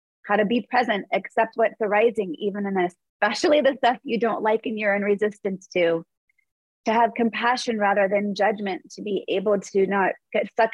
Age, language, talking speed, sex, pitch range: 30-49, English, 185 wpm, female, 195-235 Hz